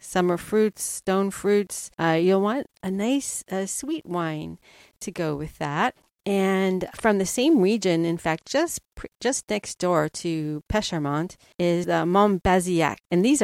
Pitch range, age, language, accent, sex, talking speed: 165-215 Hz, 40-59, English, American, female, 155 wpm